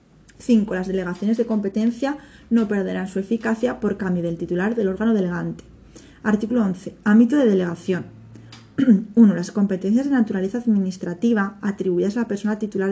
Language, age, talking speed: Spanish, 20-39, 150 wpm